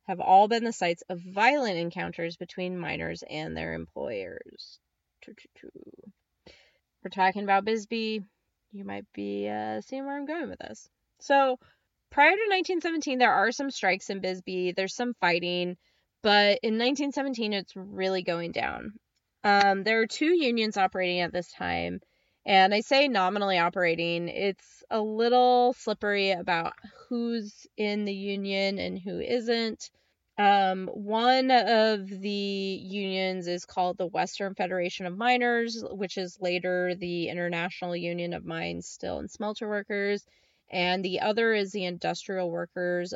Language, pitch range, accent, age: English, 175-225 Hz, American, 20-39